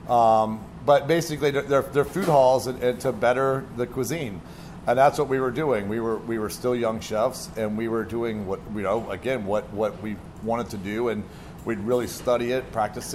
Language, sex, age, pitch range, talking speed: English, male, 40-59, 105-125 Hz, 210 wpm